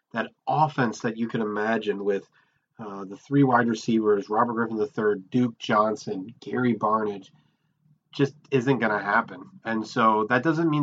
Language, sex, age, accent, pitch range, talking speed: English, male, 30-49, American, 105-130 Hz, 160 wpm